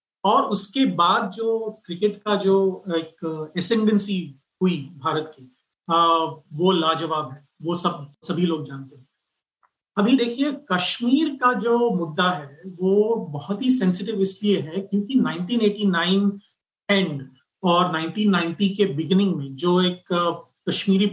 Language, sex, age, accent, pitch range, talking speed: Hindi, male, 40-59, native, 170-215 Hz, 130 wpm